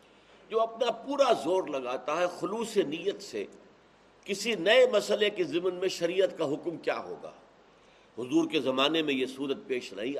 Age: 60-79